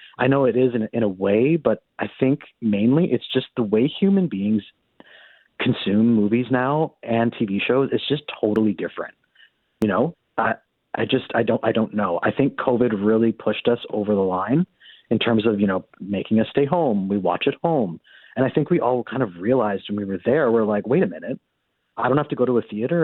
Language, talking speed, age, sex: English, 220 wpm, 30-49, male